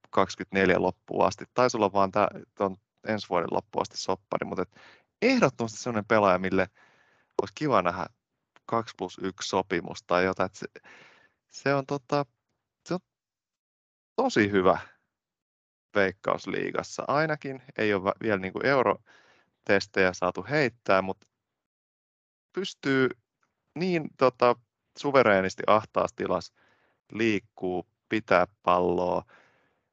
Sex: male